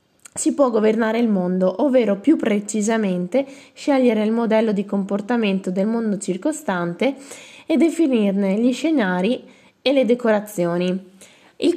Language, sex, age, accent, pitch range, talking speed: Italian, female, 20-39, native, 200-255 Hz, 120 wpm